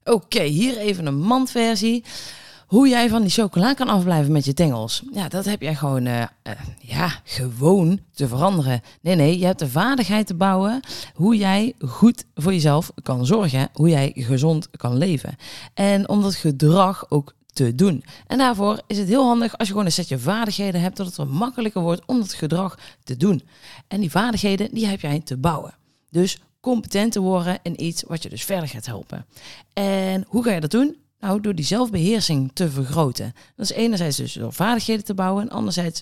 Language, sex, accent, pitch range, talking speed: Dutch, female, Dutch, 150-215 Hz, 195 wpm